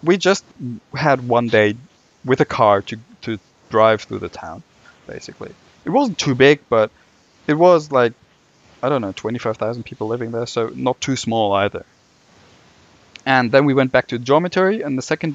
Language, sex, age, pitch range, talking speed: English, male, 20-39, 110-130 Hz, 175 wpm